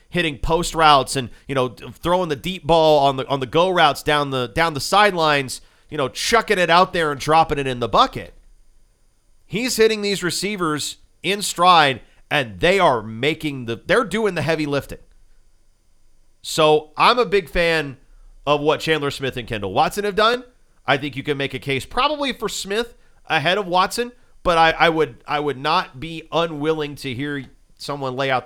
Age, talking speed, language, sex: 40-59, 190 wpm, English, male